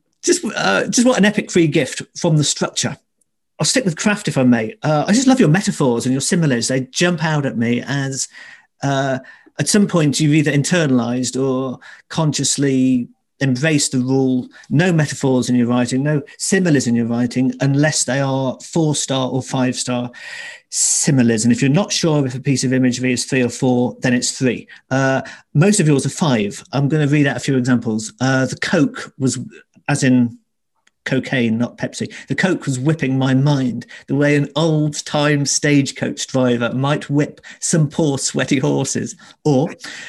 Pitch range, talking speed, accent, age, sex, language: 125-155 Hz, 185 wpm, British, 50-69, male, English